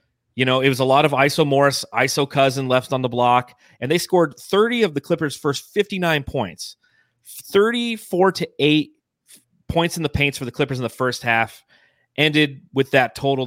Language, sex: English, male